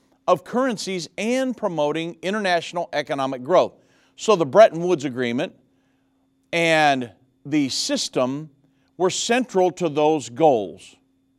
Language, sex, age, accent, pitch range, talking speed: English, male, 50-69, American, 140-195 Hz, 105 wpm